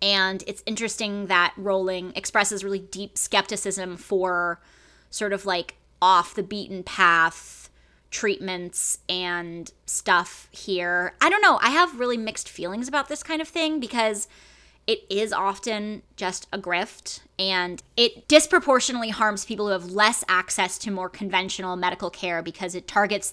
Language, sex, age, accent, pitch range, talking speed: English, female, 20-39, American, 185-245 Hz, 150 wpm